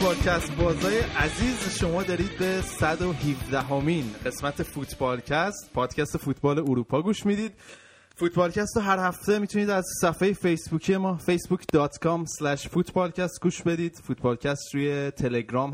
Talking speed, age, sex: 115 wpm, 20-39, male